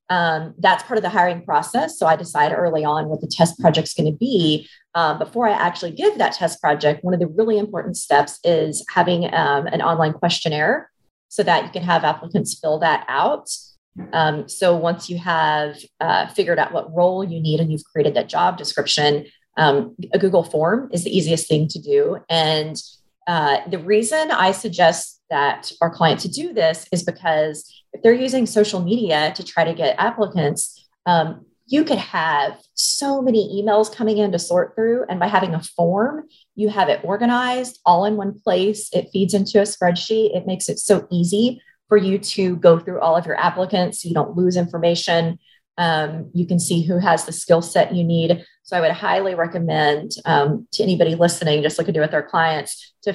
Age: 30-49